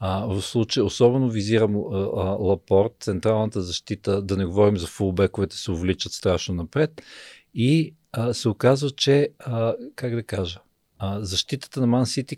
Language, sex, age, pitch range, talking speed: Bulgarian, male, 50-69, 100-125 Hz, 160 wpm